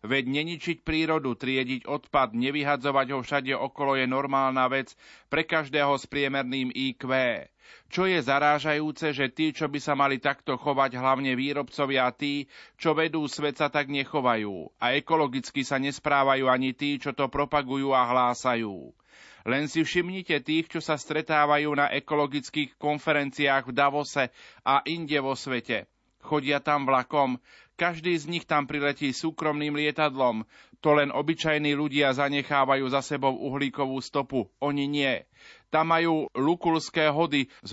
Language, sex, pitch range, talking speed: Slovak, male, 135-155 Hz, 145 wpm